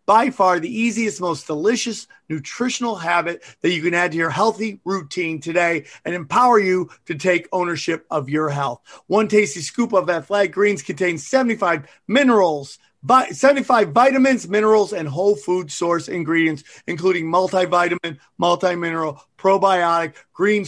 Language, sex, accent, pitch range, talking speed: English, male, American, 160-205 Hz, 140 wpm